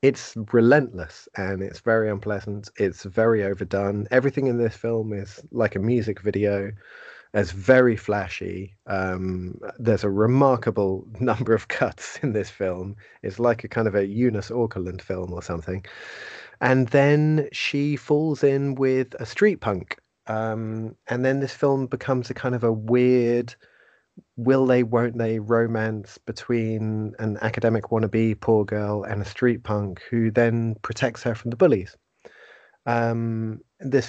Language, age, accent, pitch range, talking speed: English, 30-49, British, 100-125 Hz, 150 wpm